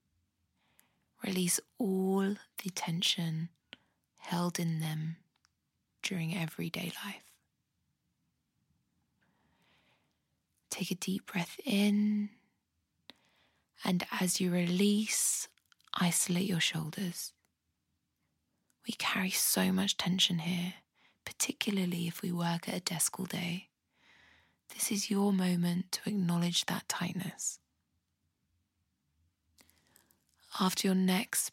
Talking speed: 90 wpm